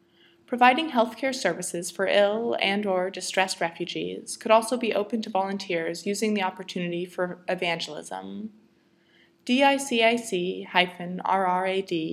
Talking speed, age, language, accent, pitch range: 105 wpm, 20-39, English, American, 175-215 Hz